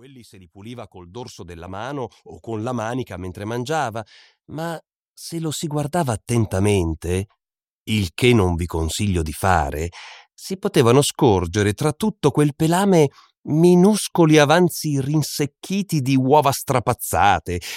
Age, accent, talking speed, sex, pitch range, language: 40-59, native, 135 wpm, male, 100-145 Hz, Italian